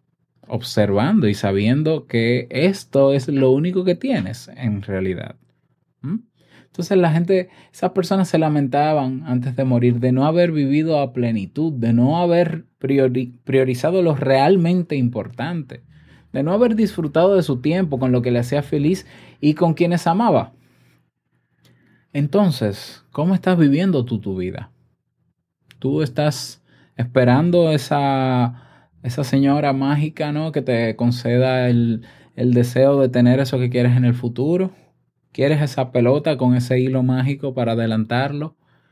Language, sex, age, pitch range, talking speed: Spanish, male, 20-39, 120-155 Hz, 140 wpm